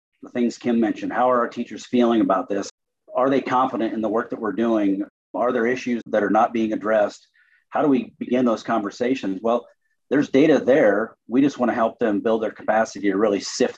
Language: English